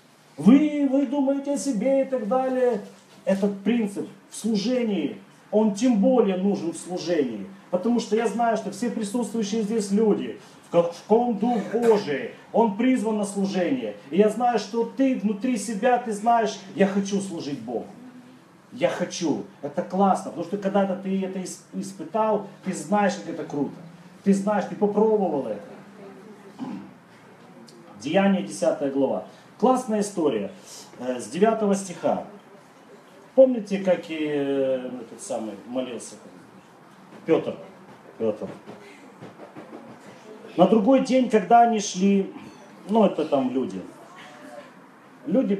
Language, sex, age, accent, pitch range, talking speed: Russian, male, 40-59, native, 175-230 Hz, 125 wpm